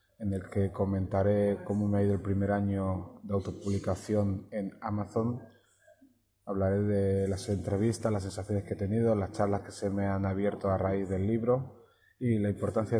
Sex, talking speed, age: male, 180 wpm, 30-49